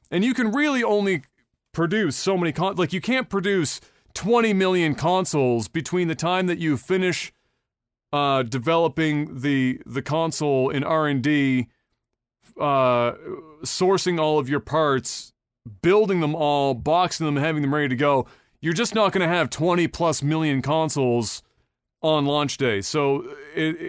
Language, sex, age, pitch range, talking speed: English, male, 30-49, 130-170 Hz, 150 wpm